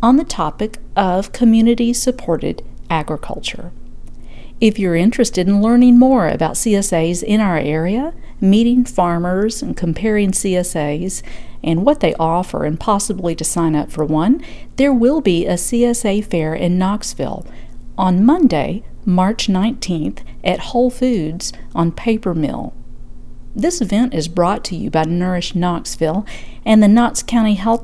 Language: English